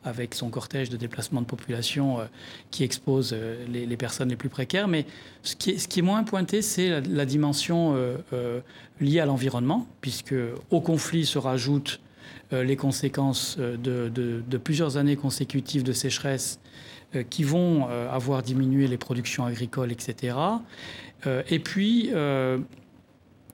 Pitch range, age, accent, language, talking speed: 125-160 Hz, 40-59, French, French, 160 wpm